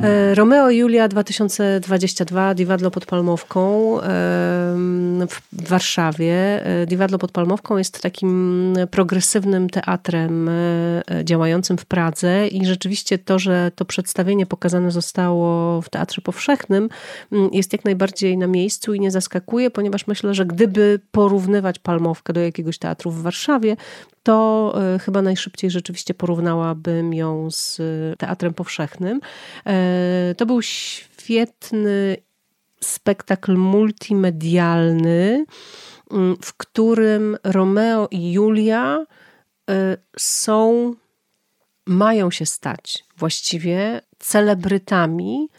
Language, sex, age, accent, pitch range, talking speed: Polish, female, 40-59, native, 175-210 Hz, 95 wpm